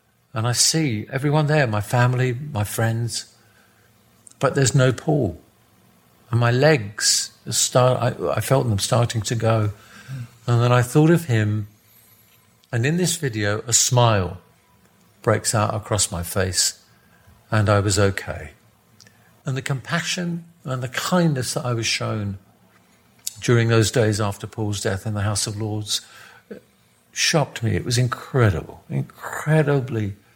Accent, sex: British, male